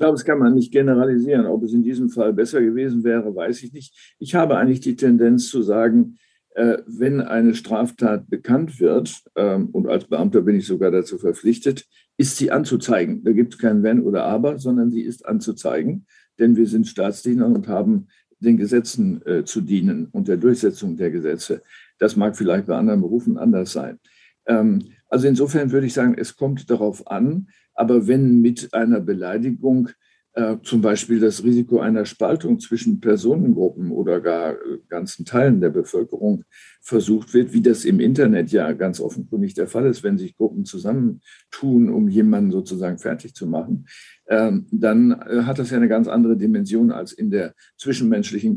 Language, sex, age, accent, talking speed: German, male, 60-79, German, 175 wpm